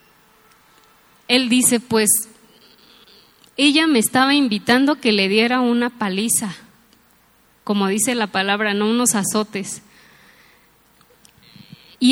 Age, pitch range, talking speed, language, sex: 20-39, 210-245 Hz, 100 wpm, English, female